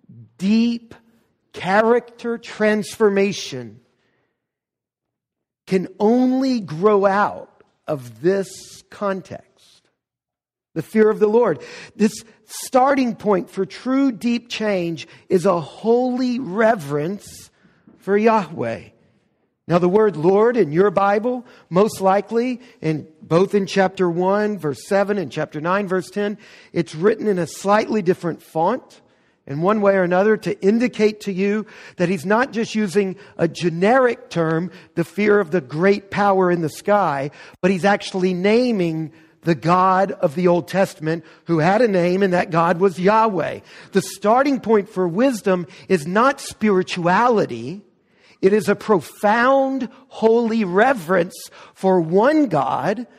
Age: 50-69